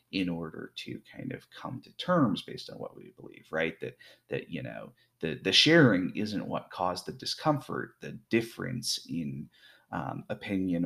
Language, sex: English, male